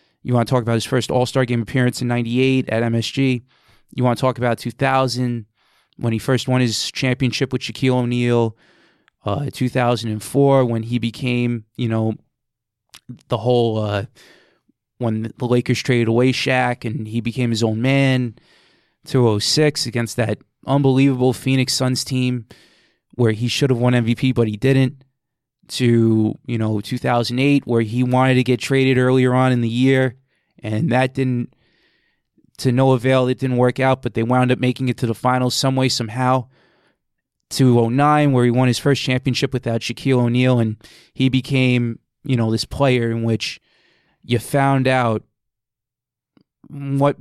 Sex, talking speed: male, 160 wpm